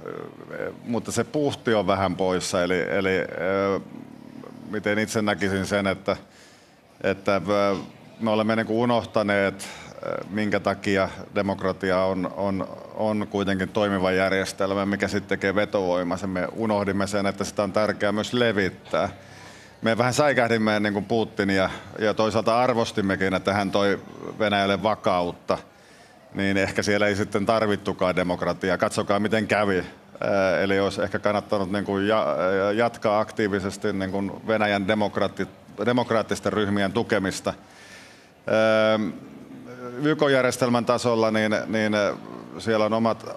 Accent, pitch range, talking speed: native, 100-110 Hz, 120 wpm